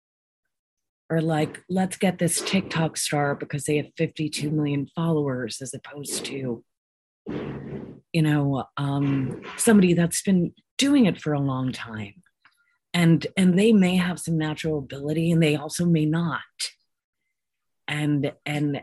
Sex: female